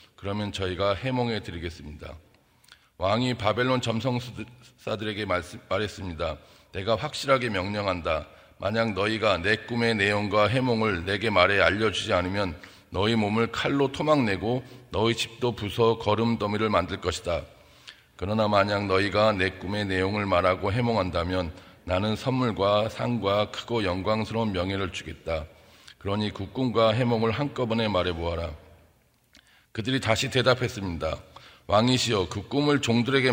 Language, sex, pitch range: Korean, male, 95-120 Hz